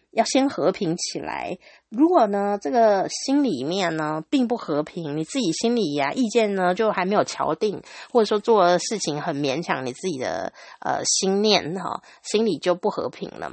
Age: 30-49